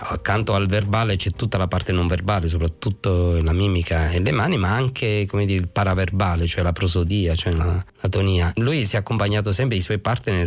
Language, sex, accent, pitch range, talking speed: Italian, male, native, 95-115 Hz, 190 wpm